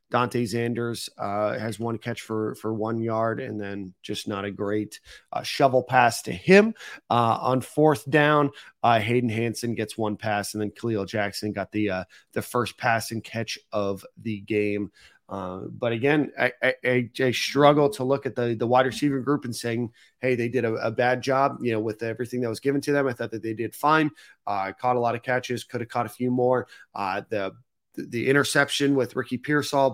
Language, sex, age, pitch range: English, male, 30-49, 110-140 Hz